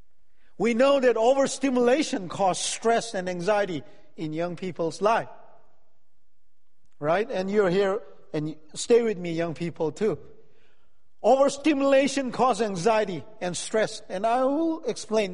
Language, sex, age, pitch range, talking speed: English, male, 50-69, 200-260 Hz, 125 wpm